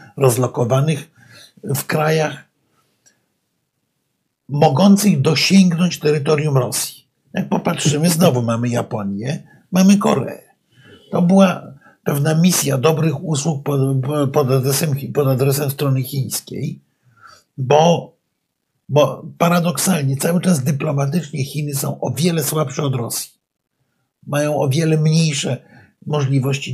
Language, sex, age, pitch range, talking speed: Polish, male, 50-69, 135-165 Hz, 95 wpm